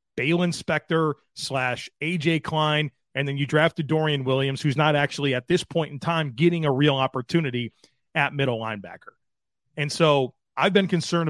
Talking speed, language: 165 wpm, English